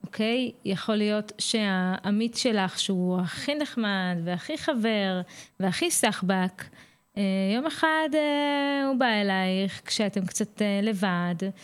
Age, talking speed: 20-39, 110 wpm